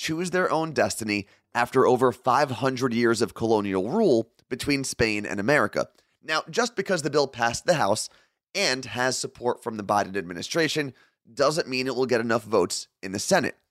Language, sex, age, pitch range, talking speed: English, male, 30-49, 115-160 Hz, 175 wpm